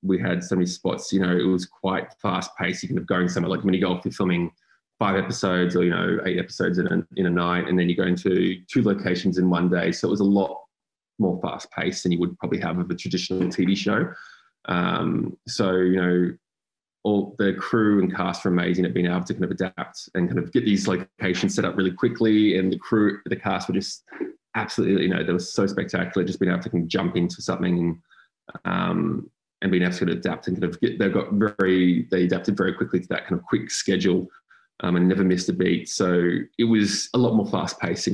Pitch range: 90-100 Hz